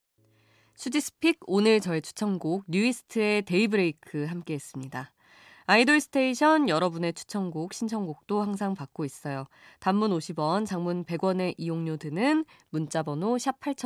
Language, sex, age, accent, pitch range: Korean, female, 20-39, native, 155-235 Hz